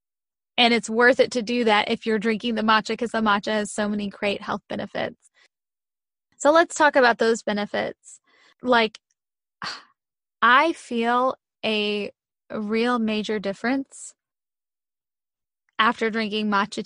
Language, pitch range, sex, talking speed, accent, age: English, 210-245 Hz, female, 130 wpm, American, 20-39